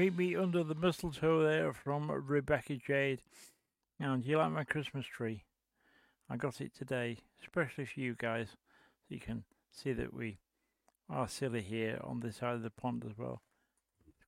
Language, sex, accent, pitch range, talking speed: English, male, British, 115-155 Hz, 175 wpm